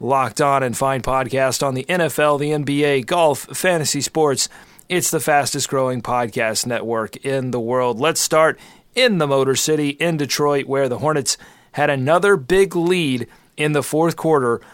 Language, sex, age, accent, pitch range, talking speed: English, male, 30-49, American, 135-160 Hz, 165 wpm